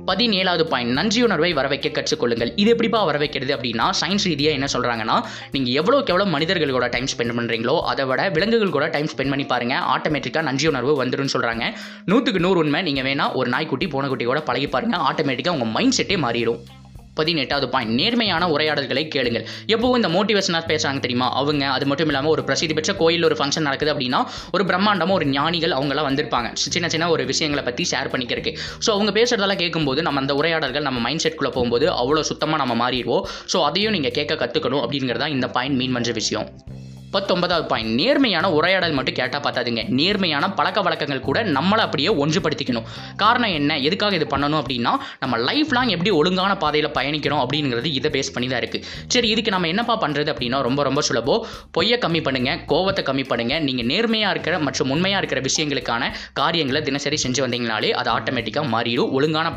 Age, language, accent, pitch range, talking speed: 20-39, Tamil, native, 130-175 Hz, 180 wpm